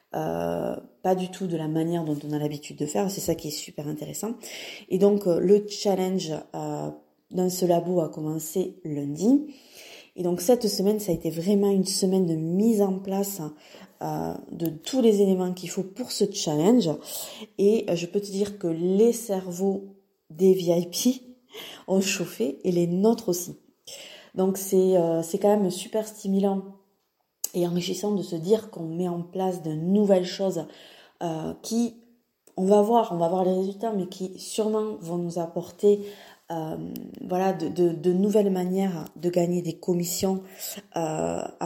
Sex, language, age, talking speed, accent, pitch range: female, French, 20-39, 170 wpm, French, 170-205 Hz